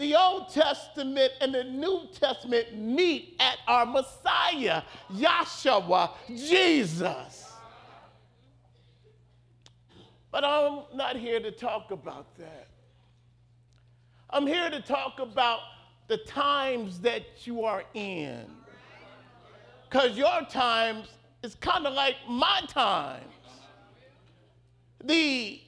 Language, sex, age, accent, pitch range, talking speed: English, male, 40-59, American, 185-295 Hz, 100 wpm